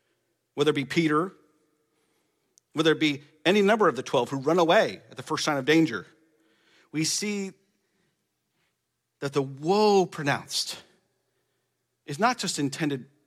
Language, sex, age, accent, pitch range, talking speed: English, male, 40-59, American, 140-175 Hz, 140 wpm